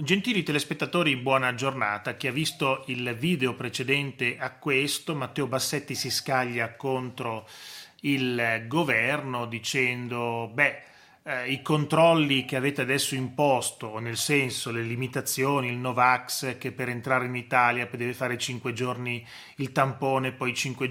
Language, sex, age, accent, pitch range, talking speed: Italian, male, 30-49, native, 125-150 Hz, 135 wpm